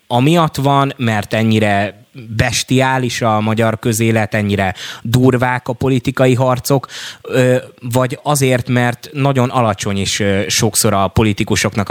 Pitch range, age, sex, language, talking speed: 100-125 Hz, 20-39, male, Hungarian, 110 wpm